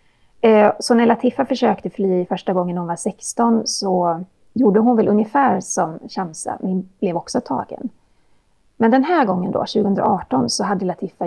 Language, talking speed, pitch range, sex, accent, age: Swedish, 160 wpm, 180-235 Hz, female, native, 30-49